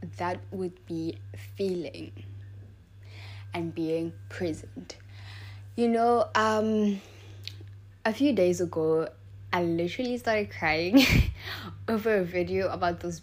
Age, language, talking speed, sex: 10-29, English, 105 wpm, female